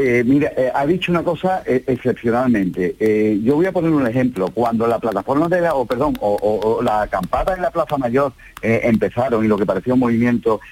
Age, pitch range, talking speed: 50-69, 110-150 Hz, 230 wpm